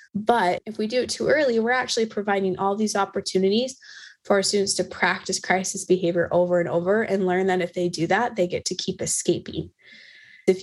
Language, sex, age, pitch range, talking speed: English, female, 20-39, 190-240 Hz, 205 wpm